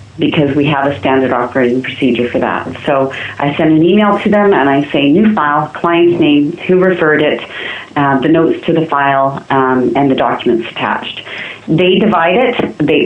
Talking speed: 190 wpm